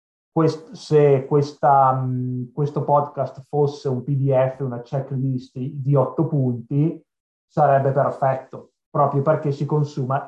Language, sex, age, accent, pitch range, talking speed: Italian, male, 30-49, native, 135-160 Hz, 100 wpm